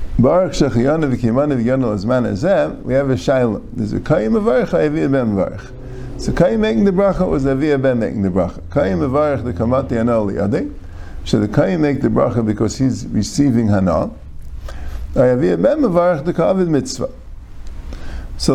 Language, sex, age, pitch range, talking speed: English, male, 50-69, 100-145 Hz, 170 wpm